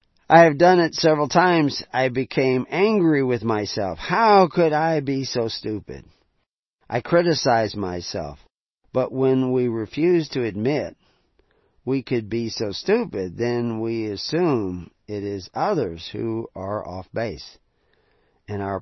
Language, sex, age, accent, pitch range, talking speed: English, male, 40-59, American, 100-130 Hz, 135 wpm